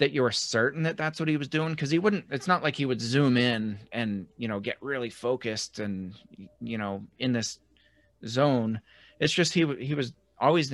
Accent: American